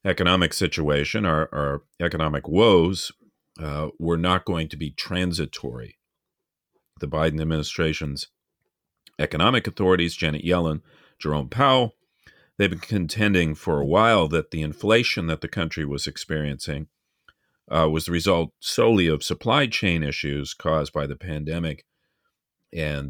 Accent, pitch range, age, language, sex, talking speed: American, 75-90 Hz, 40-59, English, male, 130 wpm